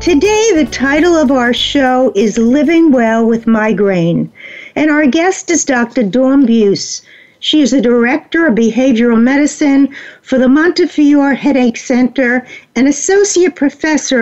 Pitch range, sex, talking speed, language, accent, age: 230-310 Hz, female, 140 wpm, English, American, 50-69